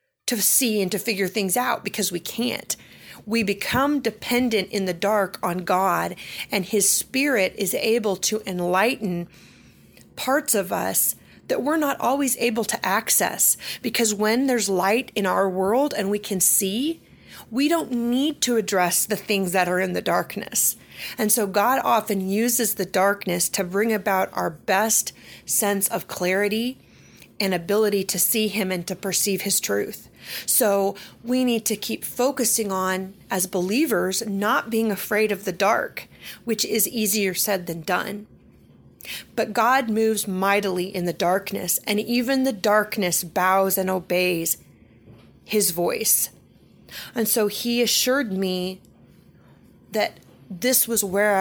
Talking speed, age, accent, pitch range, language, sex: 150 wpm, 30-49, American, 190-230 Hz, English, female